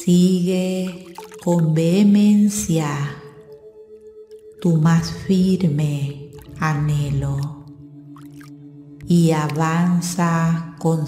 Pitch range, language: 155-195 Hz, Spanish